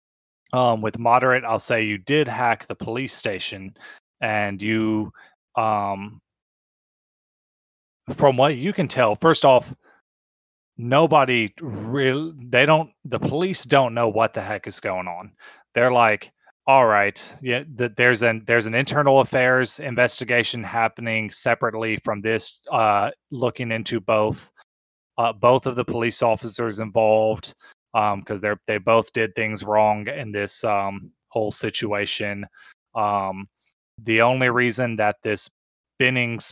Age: 20-39